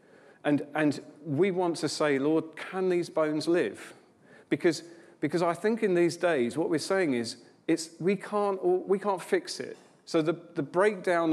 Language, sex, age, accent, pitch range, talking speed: English, male, 40-59, British, 130-170 Hz, 175 wpm